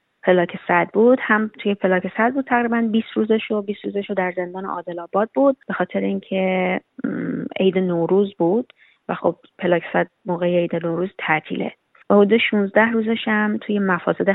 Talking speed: 150 wpm